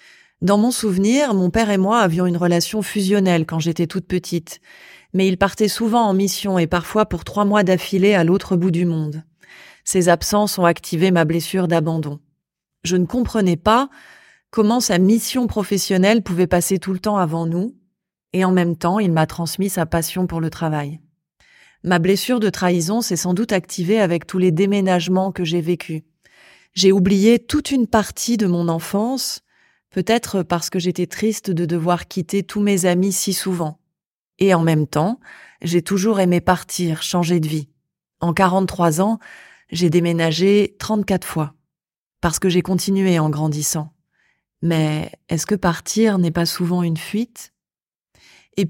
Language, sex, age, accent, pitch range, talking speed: French, female, 30-49, French, 170-200 Hz, 170 wpm